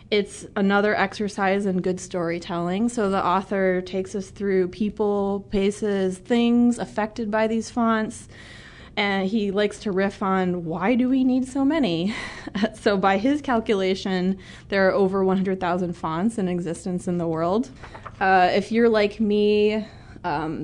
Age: 20-39